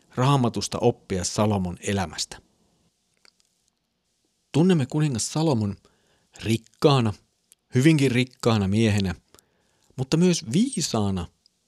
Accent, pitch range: native, 100-140 Hz